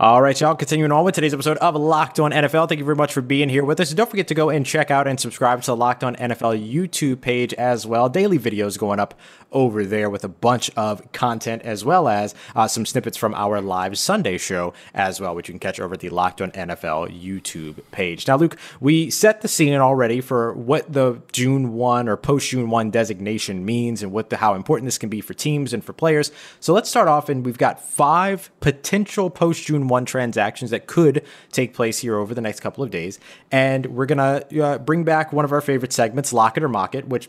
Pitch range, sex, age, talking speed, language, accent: 105-150 Hz, male, 20-39, 235 wpm, English, American